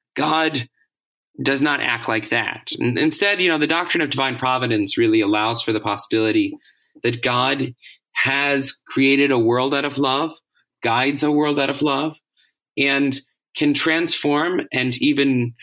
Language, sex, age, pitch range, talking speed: English, male, 20-39, 125-190 Hz, 150 wpm